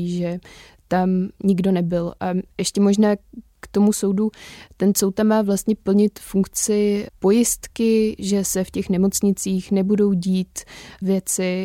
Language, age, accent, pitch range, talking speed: Czech, 20-39, native, 185-200 Hz, 130 wpm